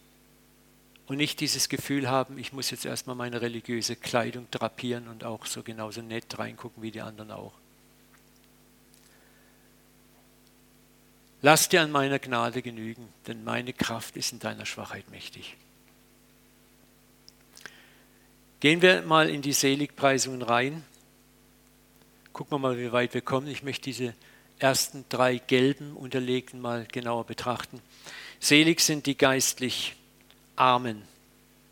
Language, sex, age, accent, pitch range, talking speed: German, male, 50-69, German, 110-130 Hz, 125 wpm